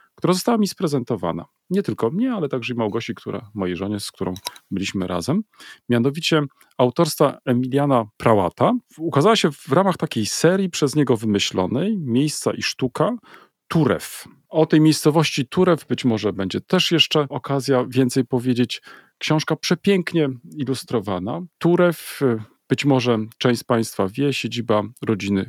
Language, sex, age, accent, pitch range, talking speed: Polish, male, 40-59, native, 110-155 Hz, 140 wpm